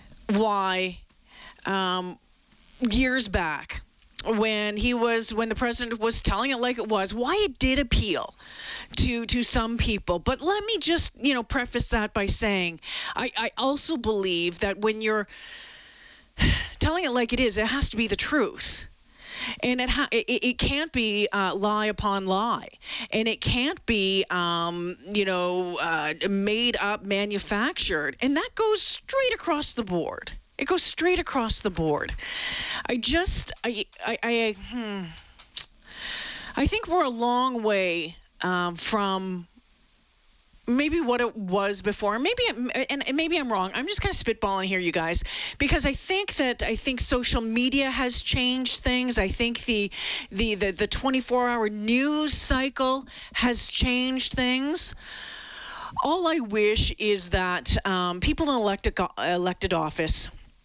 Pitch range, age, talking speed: 195-255 Hz, 40-59, 150 wpm